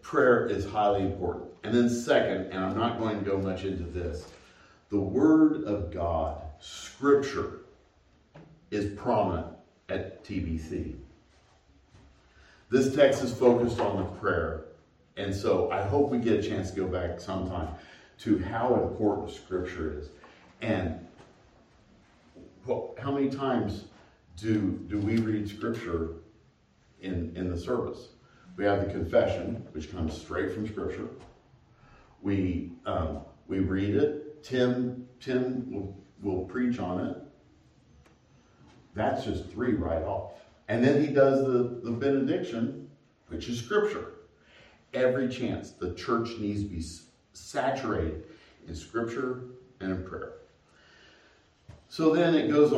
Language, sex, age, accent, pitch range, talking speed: English, male, 50-69, American, 90-125 Hz, 130 wpm